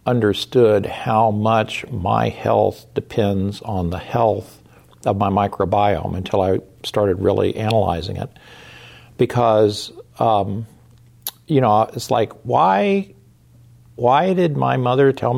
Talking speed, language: 115 wpm, English